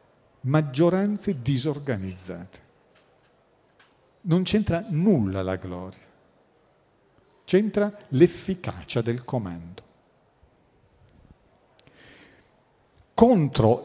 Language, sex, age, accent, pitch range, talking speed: Italian, male, 50-69, native, 105-155 Hz, 50 wpm